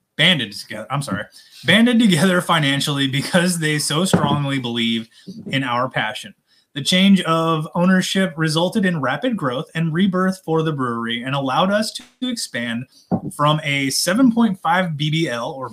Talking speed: 145 wpm